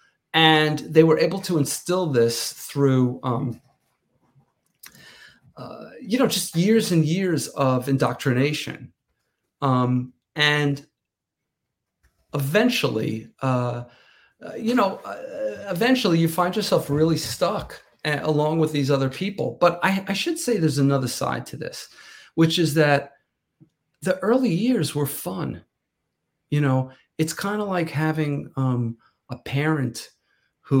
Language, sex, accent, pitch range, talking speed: English, male, American, 125-160 Hz, 130 wpm